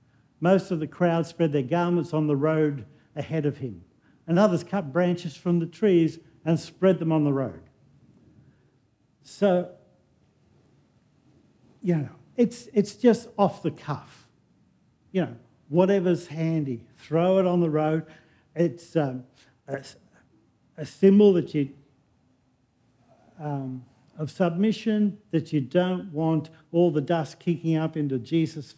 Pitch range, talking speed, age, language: 140-175 Hz, 135 wpm, 50-69, English